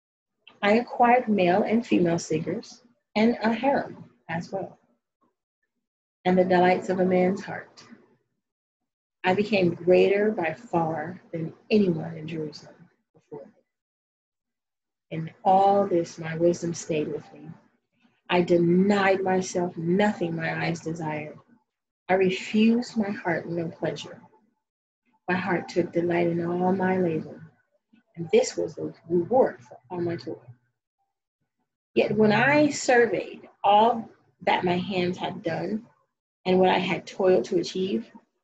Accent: American